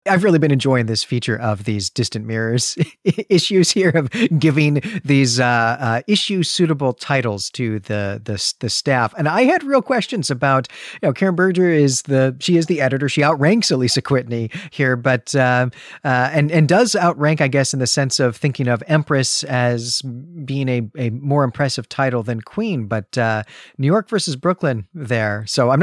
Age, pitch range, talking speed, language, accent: 40-59, 120-165 Hz, 185 wpm, English, American